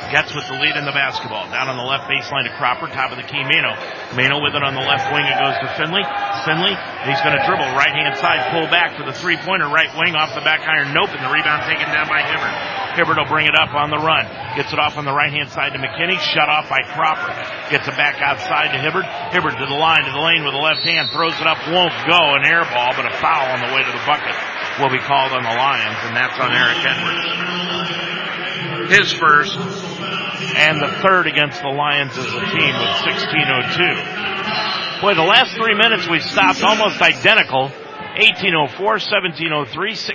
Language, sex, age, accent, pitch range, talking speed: English, male, 40-59, American, 150-190 Hz, 220 wpm